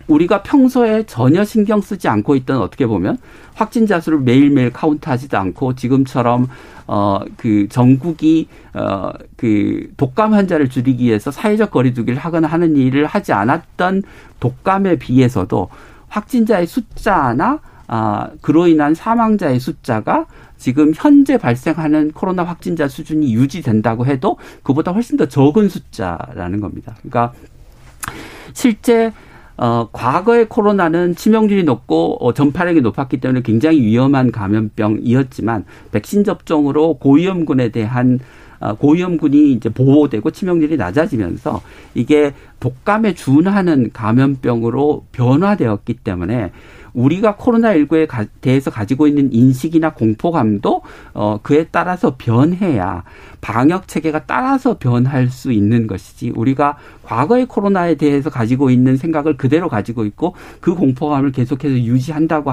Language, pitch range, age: Korean, 120-170 Hz, 50-69